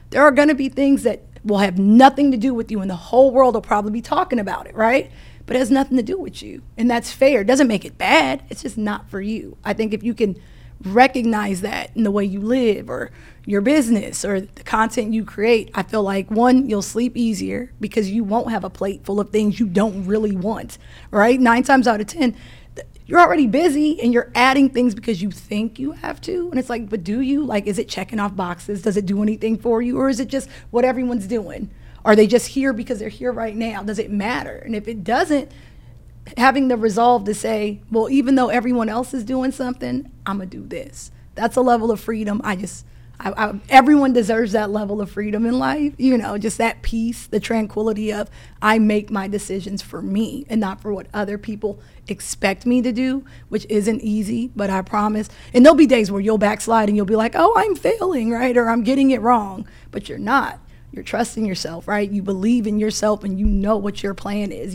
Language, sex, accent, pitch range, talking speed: English, female, American, 205-250 Hz, 230 wpm